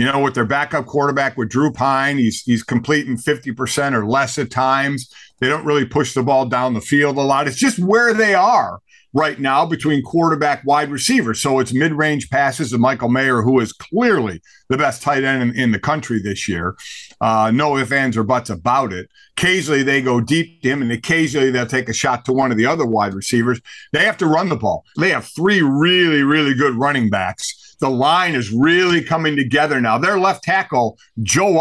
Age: 50-69